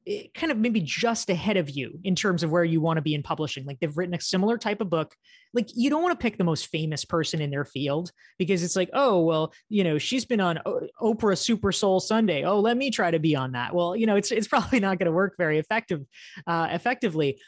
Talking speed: 260 wpm